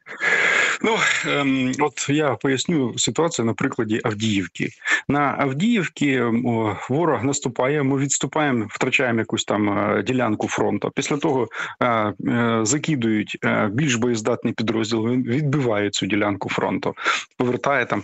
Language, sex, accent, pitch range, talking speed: Ukrainian, male, native, 110-145 Hz, 105 wpm